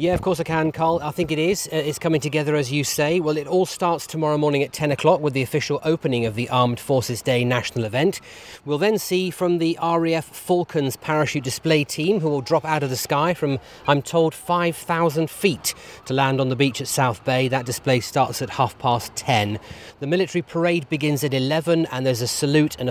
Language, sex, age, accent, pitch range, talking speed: English, male, 30-49, British, 130-165 Hz, 225 wpm